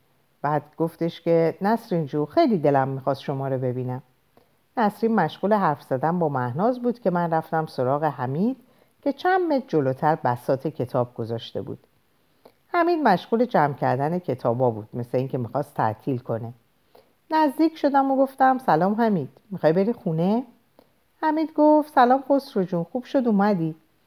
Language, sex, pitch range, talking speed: Persian, female, 140-220 Hz, 145 wpm